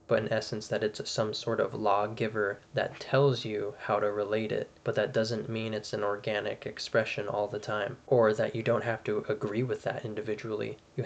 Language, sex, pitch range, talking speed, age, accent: English, male, 110-120 Hz, 205 wpm, 20-39, American